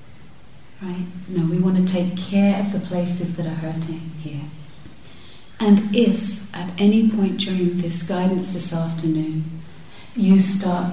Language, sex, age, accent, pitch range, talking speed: English, female, 40-59, British, 165-195 Hz, 145 wpm